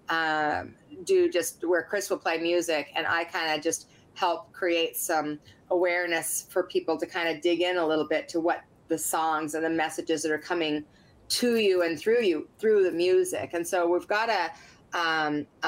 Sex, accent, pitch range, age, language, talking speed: female, American, 160-190 Hz, 30-49, English, 195 wpm